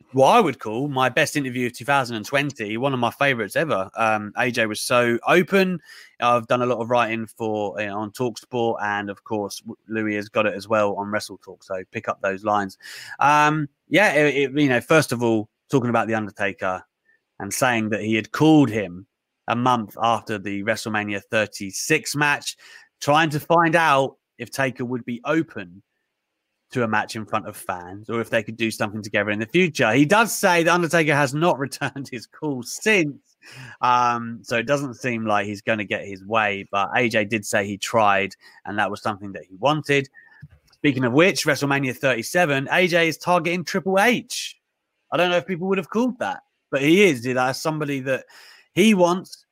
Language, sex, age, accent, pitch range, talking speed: English, male, 30-49, British, 110-145 Hz, 200 wpm